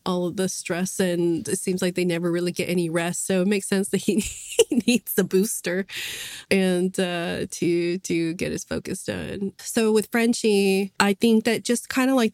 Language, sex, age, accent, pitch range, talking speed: English, female, 20-39, American, 170-190 Hz, 200 wpm